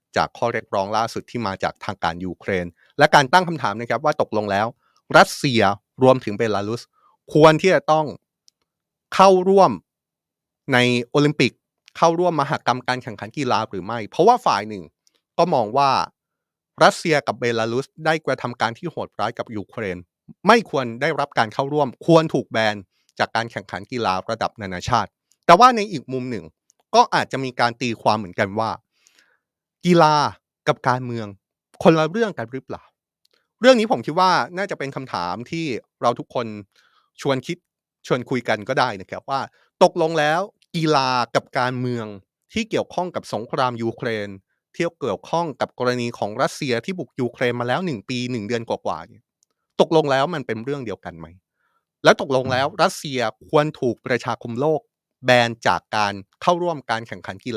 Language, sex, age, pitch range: Thai, male, 30-49, 110-155 Hz